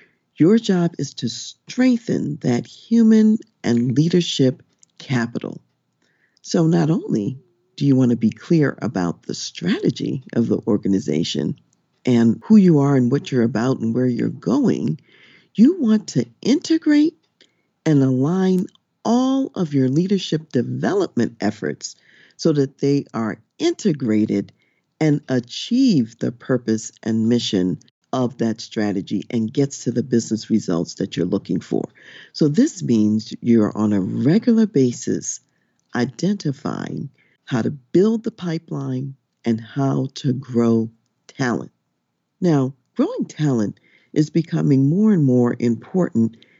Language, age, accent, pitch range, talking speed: English, 50-69, American, 115-175 Hz, 130 wpm